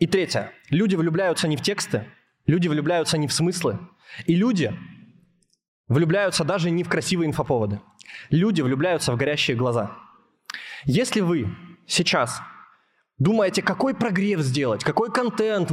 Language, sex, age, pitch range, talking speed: Russian, male, 20-39, 155-200 Hz, 130 wpm